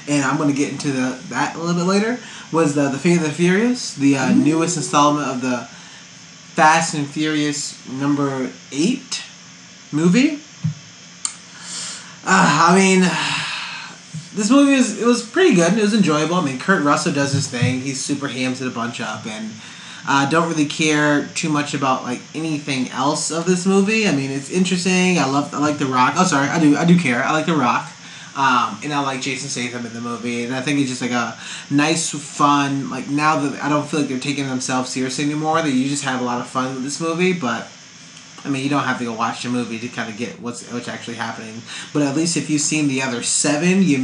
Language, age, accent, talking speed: English, 20-39, American, 220 wpm